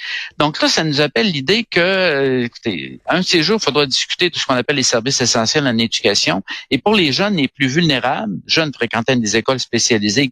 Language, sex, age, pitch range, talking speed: French, male, 60-79, 120-165 Hz, 190 wpm